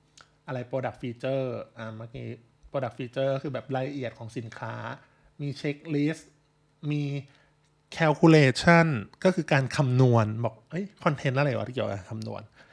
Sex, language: male, Thai